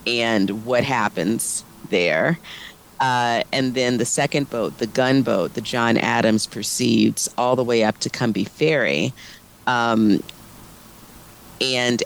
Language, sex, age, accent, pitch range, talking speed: English, female, 40-59, American, 110-125 Hz, 125 wpm